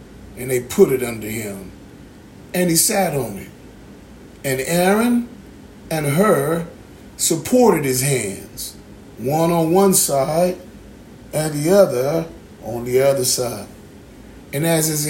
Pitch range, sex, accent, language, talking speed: 130-190 Hz, male, American, English, 125 wpm